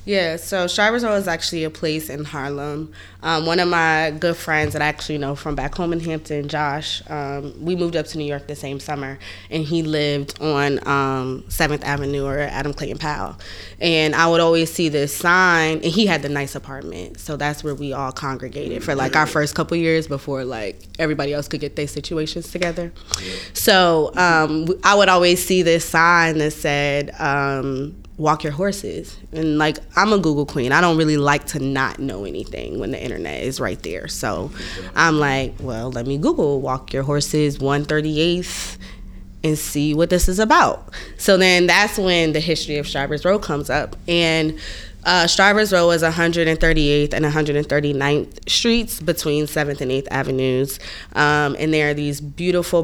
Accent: American